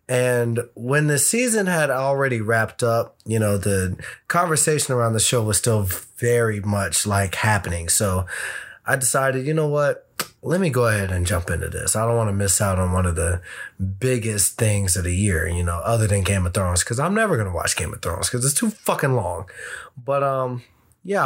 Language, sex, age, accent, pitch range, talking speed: English, male, 20-39, American, 105-135 Hz, 210 wpm